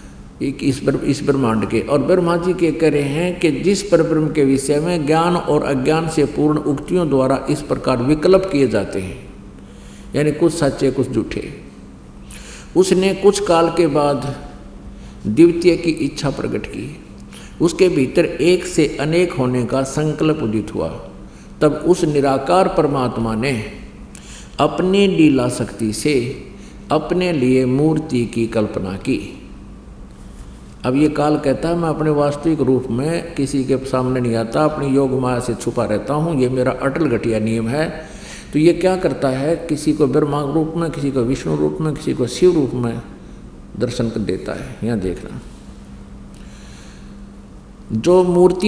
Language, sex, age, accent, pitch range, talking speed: Hindi, male, 50-69, native, 120-165 Hz, 160 wpm